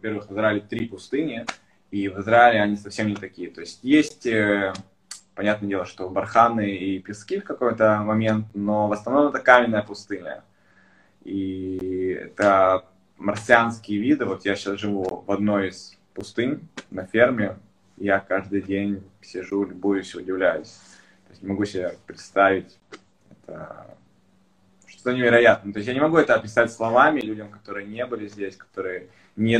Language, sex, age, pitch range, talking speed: Russian, male, 20-39, 95-115 Hz, 150 wpm